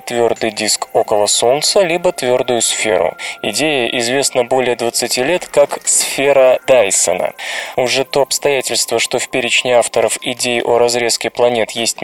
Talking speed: 135 wpm